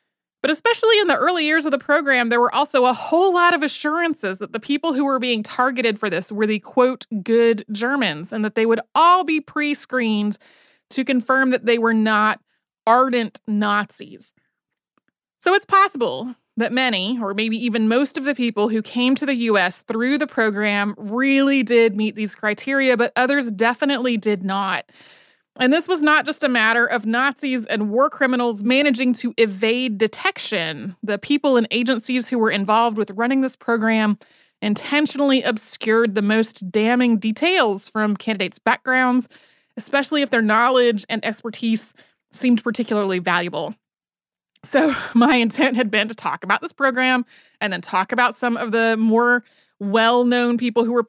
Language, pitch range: English, 215-265 Hz